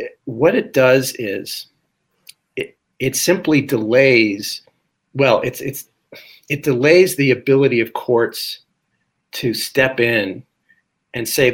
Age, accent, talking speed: 40-59, American, 115 wpm